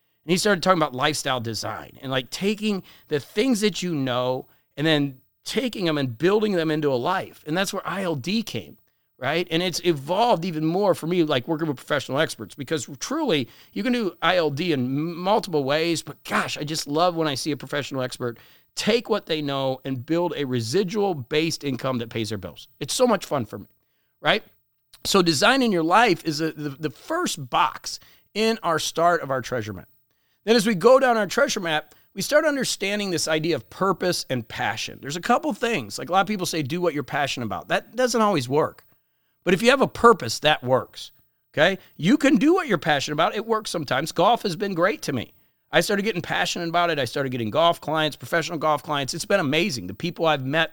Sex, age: male, 40-59